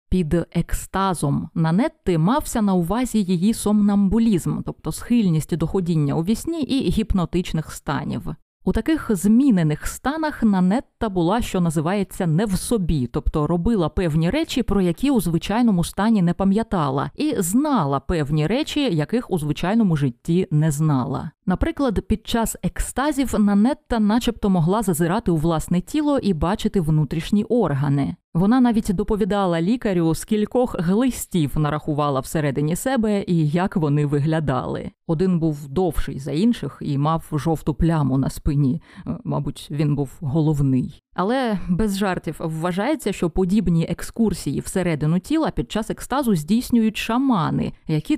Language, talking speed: Ukrainian, 130 wpm